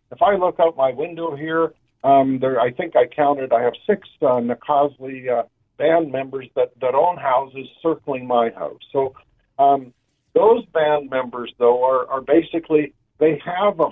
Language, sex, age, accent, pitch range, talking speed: English, male, 50-69, American, 125-170 Hz, 175 wpm